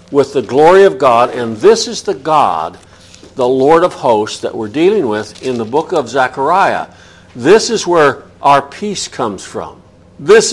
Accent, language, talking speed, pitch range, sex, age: American, English, 175 wpm, 125-185 Hz, male, 60-79